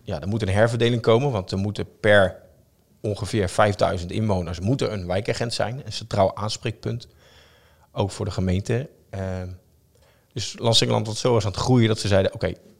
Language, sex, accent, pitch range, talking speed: Dutch, male, Dutch, 95-115 Hz, 185 wpm